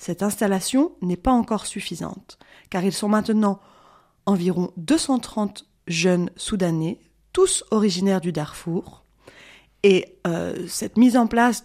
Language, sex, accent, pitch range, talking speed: French, female, French, 185-250 Hz, 125 wpm